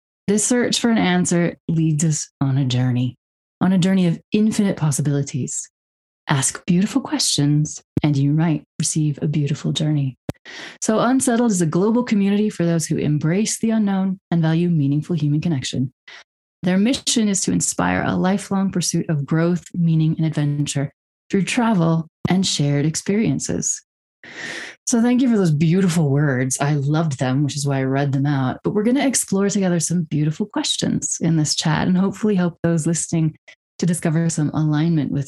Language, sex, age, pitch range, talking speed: English, female, 30-49, 145-185 Hz, 170 wpm